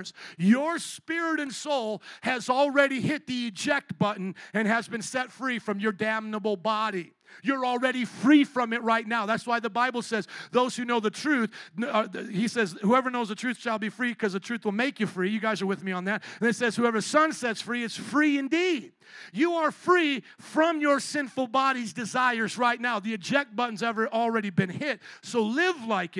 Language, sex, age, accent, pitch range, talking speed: English, male, 50-69, American, 215-275 Hz, 205 wpm